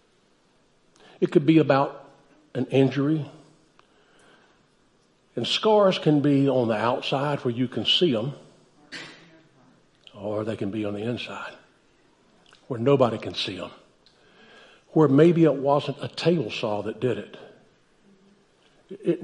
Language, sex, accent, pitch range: English, male, American, 120-160 Hz